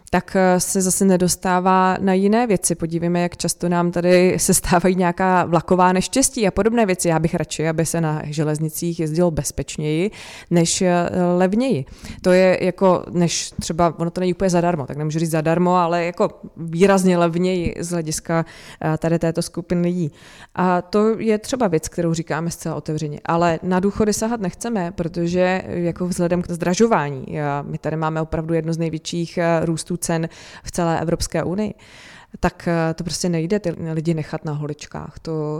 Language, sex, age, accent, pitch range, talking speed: Czech, female, 20-39, native, 165-185 Hz, 160 wpm